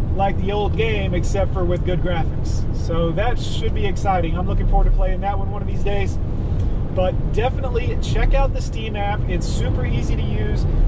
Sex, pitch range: male, 90-105 Hz